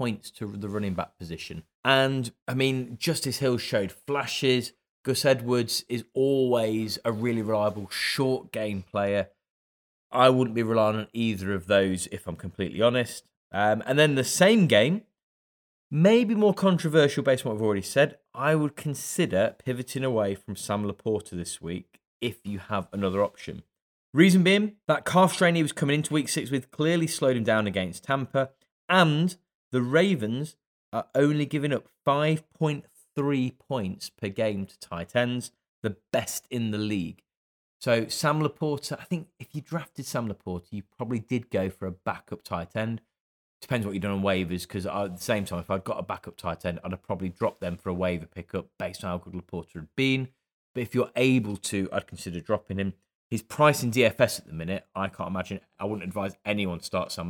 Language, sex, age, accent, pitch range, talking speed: English, male, 20-39, British, 95-135 Hz, 190 wpm